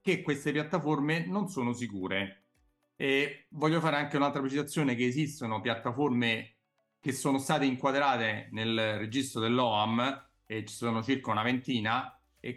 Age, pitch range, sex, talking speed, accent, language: 40-59, 115-145 Hz, male, 140 wpm, native, Italian